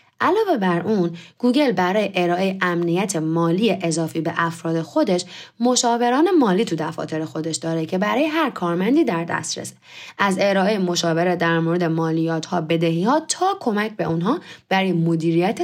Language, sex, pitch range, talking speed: Persian, female, 170-240 Hz, 150 wpm